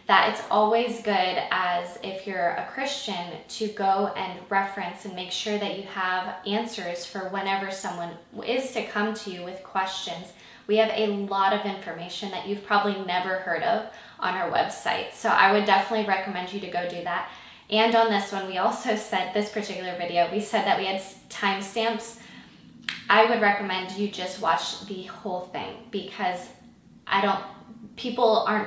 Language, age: English, 10-29